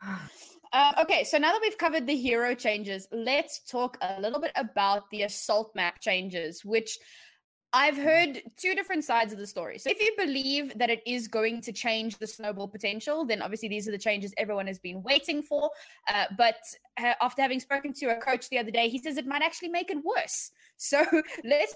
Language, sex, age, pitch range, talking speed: English, female, 20-39, 225-290 Hz, 205 wpm